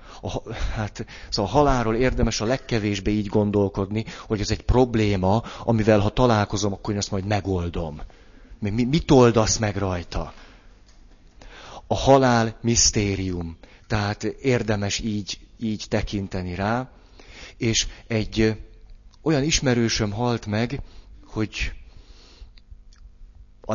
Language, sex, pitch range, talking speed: Hungarian, male, 95-120 Hz, 110 wpm